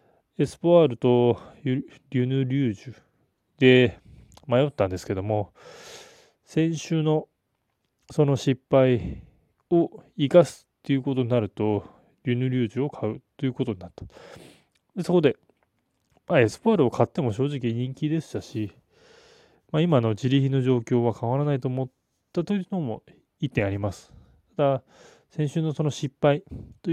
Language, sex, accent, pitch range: Japanese, male, native, 115-150 Hz